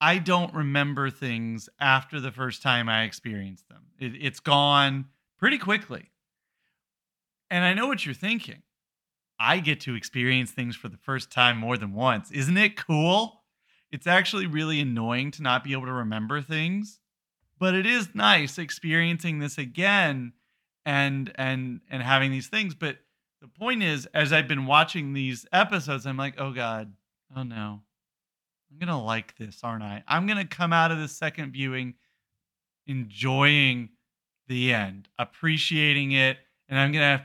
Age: 30-49